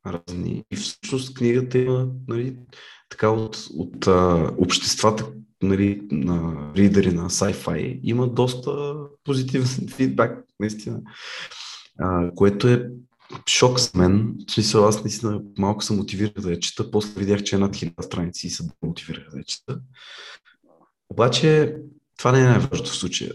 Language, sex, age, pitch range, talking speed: Bulgarian, male, 30-49, 100-125 Hz, 135 wpm